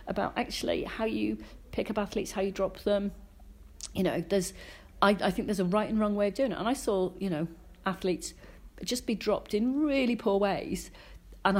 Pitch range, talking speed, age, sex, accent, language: 175-220 Hz, 205 wpm, 40-59, female, British, English